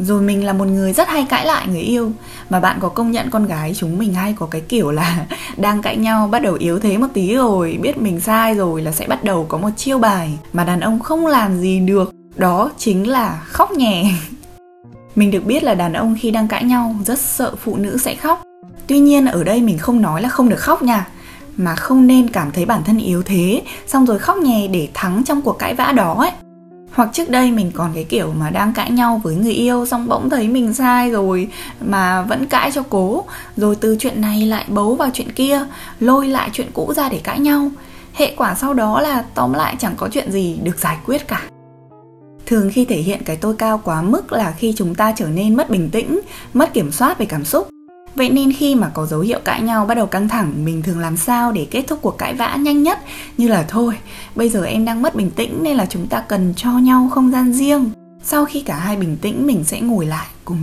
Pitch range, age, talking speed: 180-250 Hz, 10-29, 240 wpm